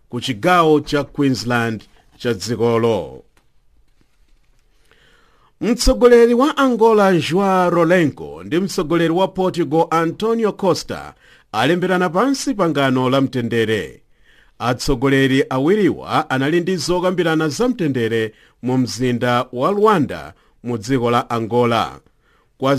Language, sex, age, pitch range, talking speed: English, male, 50-69, 125-185 Hz, 85 wpm